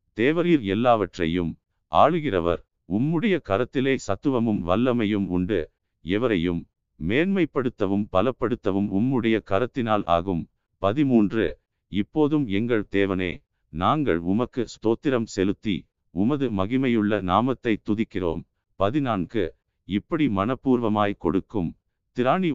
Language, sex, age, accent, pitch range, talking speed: Tamil, male, 50-69, native, 95-125 Hz, 85 wpm